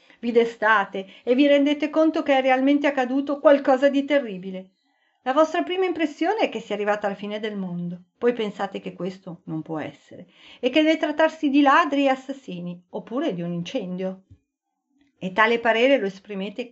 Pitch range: 195-285 Hz